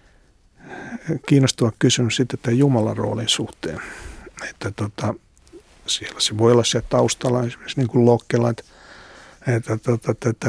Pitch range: 110-130 Hz